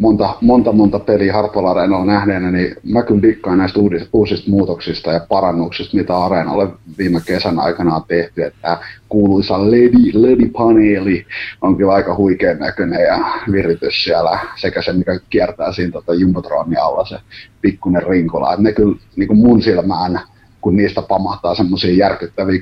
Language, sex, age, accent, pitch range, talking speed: Finnish, male, 30-49, native, 90-110 Hz, 145 wpm